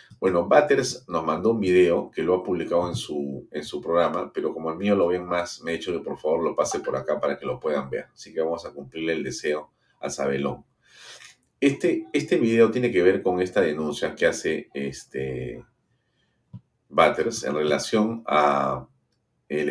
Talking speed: 190 wpm